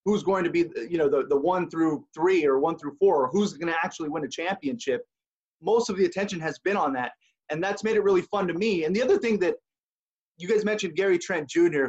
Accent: American